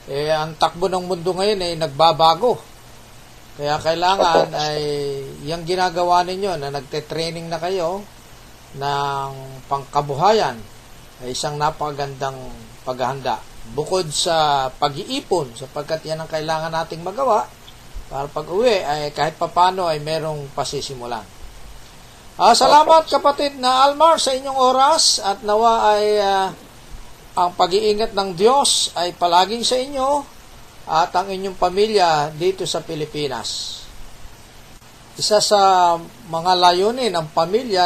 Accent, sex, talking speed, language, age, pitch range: native, male, 115 wpm, Filipino, 40-59, 140-185 Hz